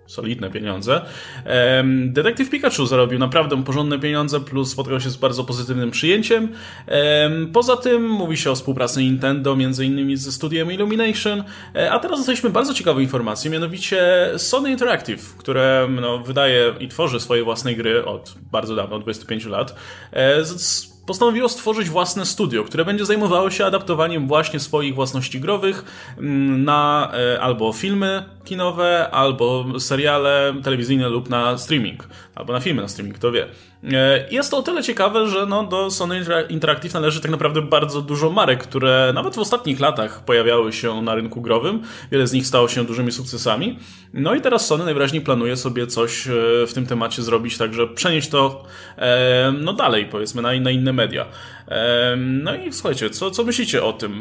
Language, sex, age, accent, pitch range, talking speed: Polish, male, 20-39, native, 125-175 Hz, 160 wpm